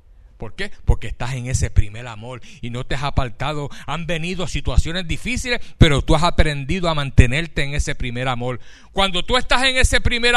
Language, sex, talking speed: Spanish, male, 190 wpm